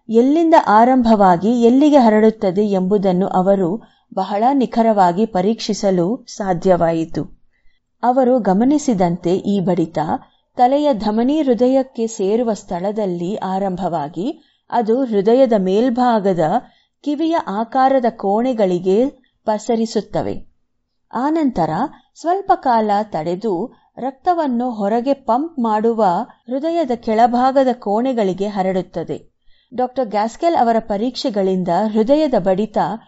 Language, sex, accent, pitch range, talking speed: Kannada, female, native, 195-265 Hz, 80 wpm